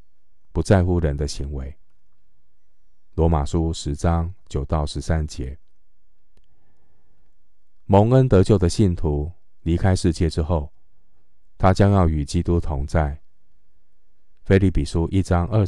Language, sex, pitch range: Chinese, male, 75-95 Hz